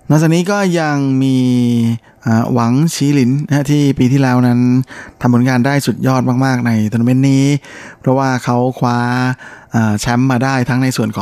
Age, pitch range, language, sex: 20-39, 115-135 Hz, Thai, male